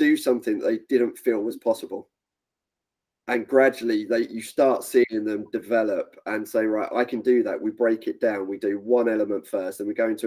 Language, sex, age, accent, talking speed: English, male, 30-49, British, 210 wpm